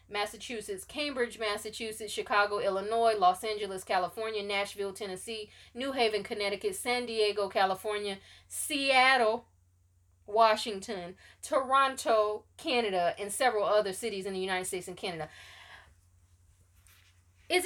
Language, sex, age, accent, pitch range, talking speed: English, female, 20-39, American, 165-245 Hz, 105 wpm